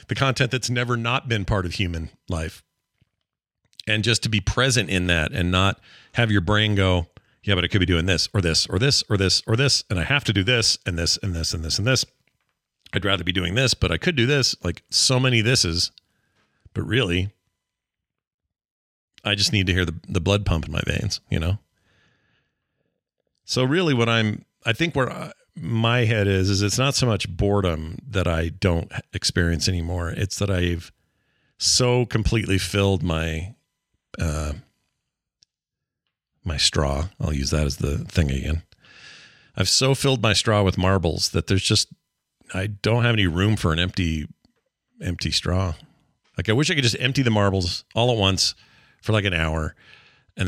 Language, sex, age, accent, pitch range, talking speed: English, male, 40-59, American, 90-115 Hz, 190 wpm